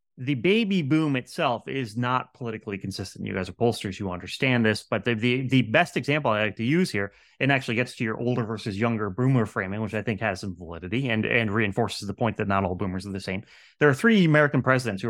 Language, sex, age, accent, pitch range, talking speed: English, male, 30-49, American, 105-130 Hz, 240 wpm